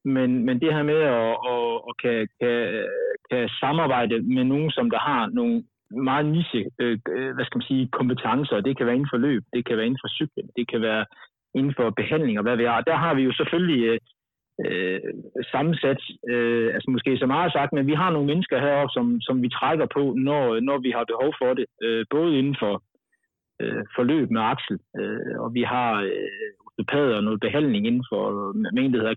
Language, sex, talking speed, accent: Danish, male, 205 wpm, native